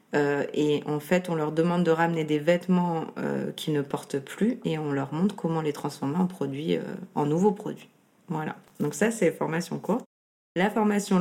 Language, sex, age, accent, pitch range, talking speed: French, female, 30-49, French, 155-185 Hz, 195 wpm